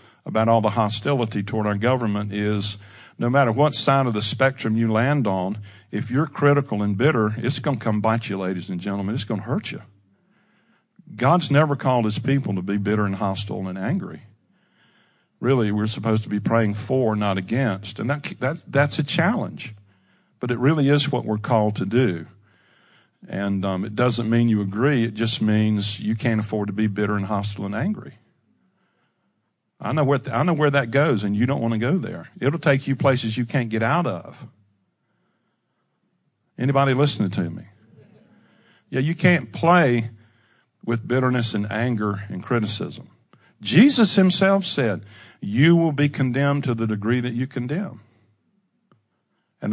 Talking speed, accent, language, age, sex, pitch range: 175 wpm, American, English, 50-69, male, 105-140 Hz